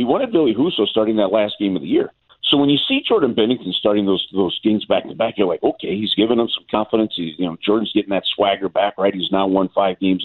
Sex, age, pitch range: male, 50-69, 100-120 Hz